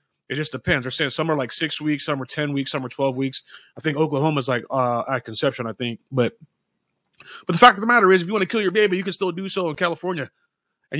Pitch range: 150-185 Hz